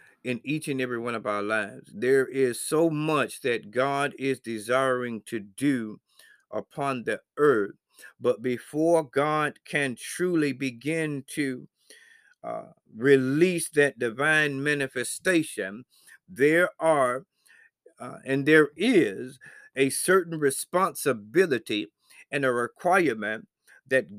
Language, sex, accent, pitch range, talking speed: English, male, American, 130-170 Hz, 115 wpm